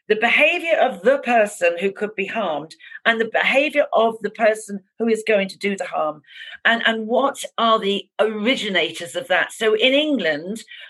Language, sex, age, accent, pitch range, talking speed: English, female, 50-69, British, 200-255 Hz, 180 wpm